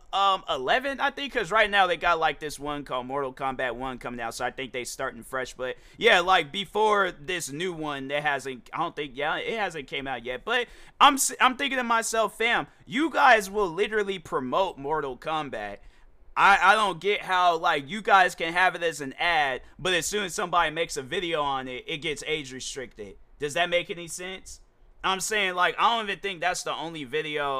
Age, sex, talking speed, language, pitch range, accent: 20-39, male, 215 wpm, English, 135-180 Hz, American